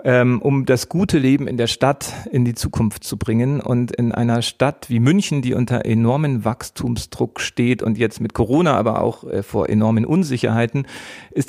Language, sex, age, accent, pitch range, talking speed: German, male, 40-59, German, 115-140 Hz, 170 wpm